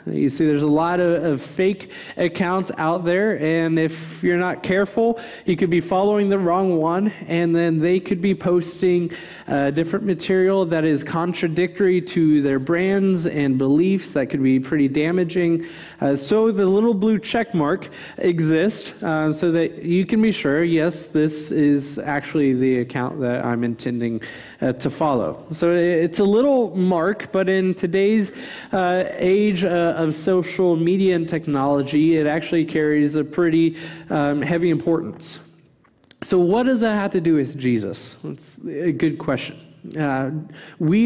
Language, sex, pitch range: English, male, 155-190 Hz